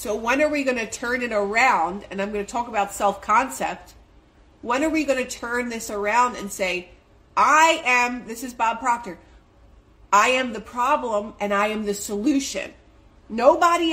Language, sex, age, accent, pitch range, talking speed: English, female, 40-59, American, 175-250 Hz, 180 wpm